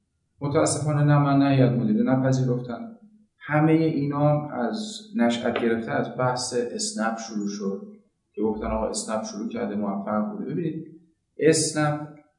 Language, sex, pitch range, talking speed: Persian, male, 120-170 Hz, 130 wpm